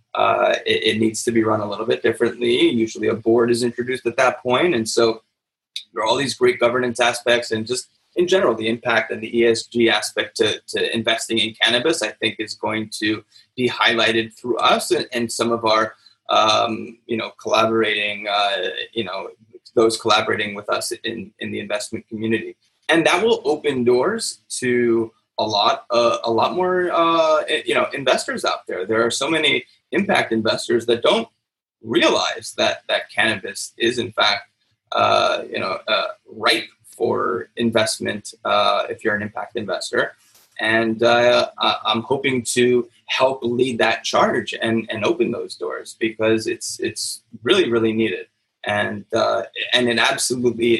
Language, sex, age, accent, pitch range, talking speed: English, male, 20-39, American, 110-130 Hz, 170 wpm